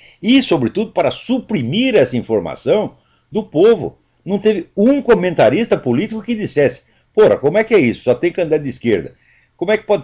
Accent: Brazilian